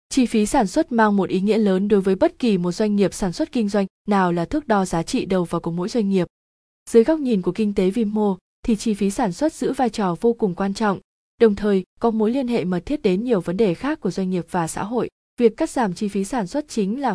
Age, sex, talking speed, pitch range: 20-39, female, 280 wpm, 190-235 Hz